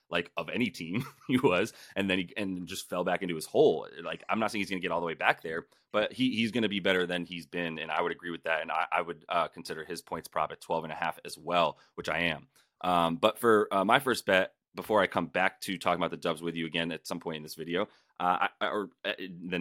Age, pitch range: 30-49, 85-105 Hz